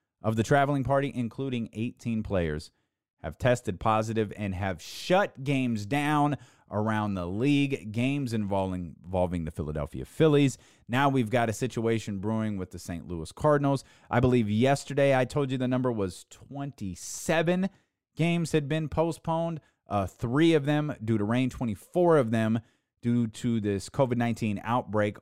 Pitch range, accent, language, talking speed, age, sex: 100-130 Hz, American, English, 150 wpm, 30-49, male